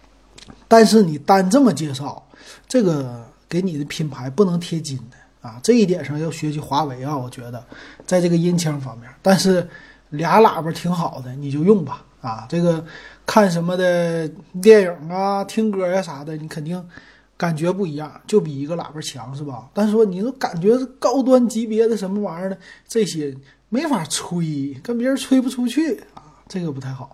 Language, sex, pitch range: Chinese, male, 150-205 Hz